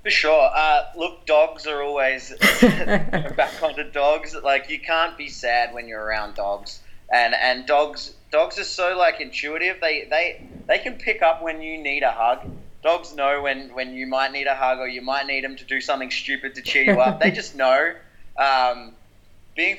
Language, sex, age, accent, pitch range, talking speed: English, male, 20-39, Australian, 120-155 Hz, 195 wpm